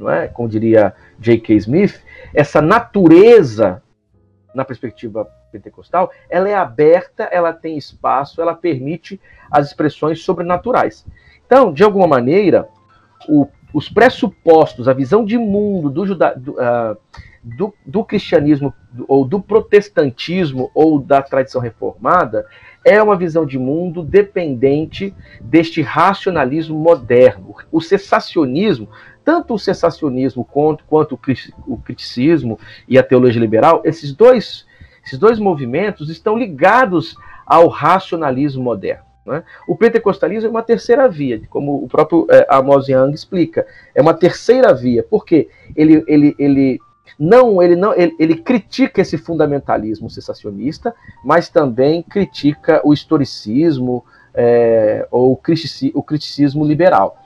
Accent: Brazilian